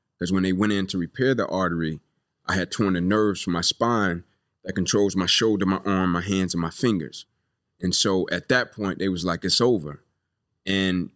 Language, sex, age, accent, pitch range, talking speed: English, male, 30-49, American, 95-110 Hz, 210 wpm